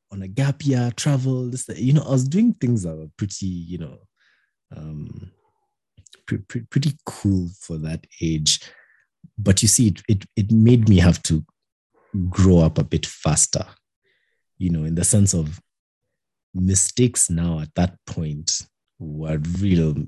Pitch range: 80-100 Hz